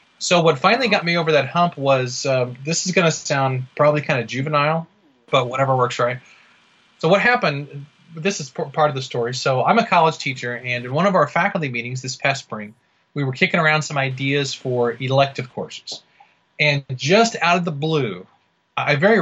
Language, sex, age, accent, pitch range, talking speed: English, male, 30-49, American, 130-165 Hz, 200 wpm